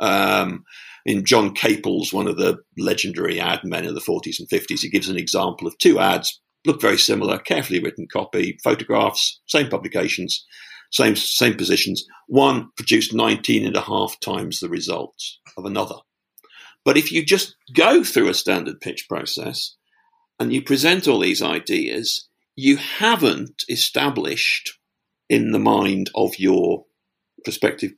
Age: 50-69